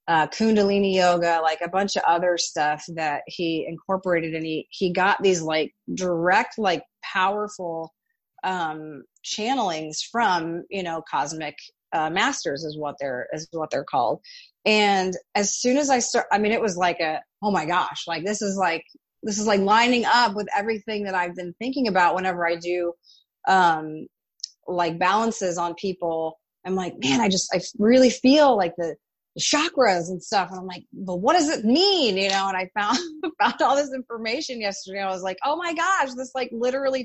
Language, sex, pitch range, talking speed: English, female, 175-240 Hz, 185 wpm